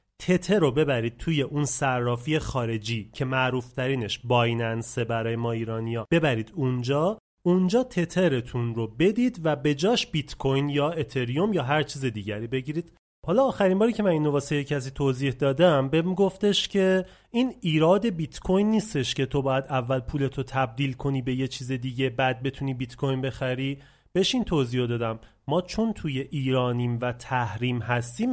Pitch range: 130-180 Hz